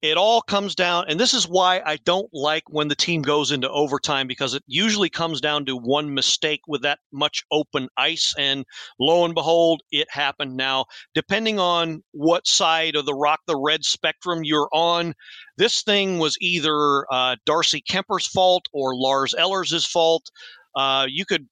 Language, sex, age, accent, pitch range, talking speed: English, male, 40-59, American, 140-185 Hz, 180 wpm